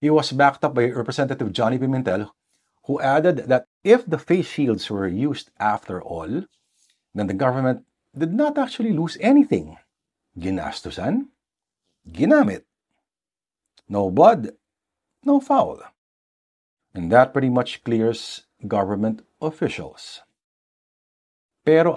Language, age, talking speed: English, 50-69, 110 wpm